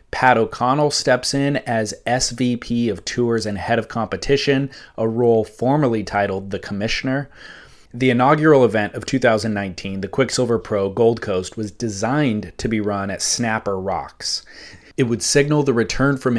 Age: 30-49